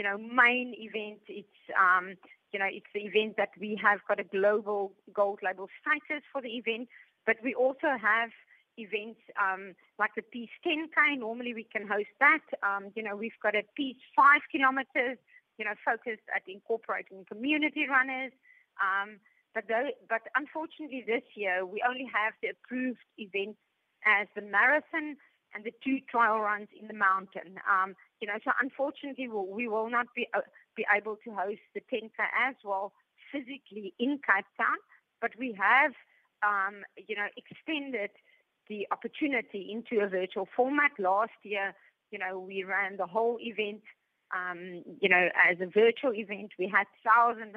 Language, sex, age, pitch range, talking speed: English, female, 30-49, 200-250 Hz, 165 wpm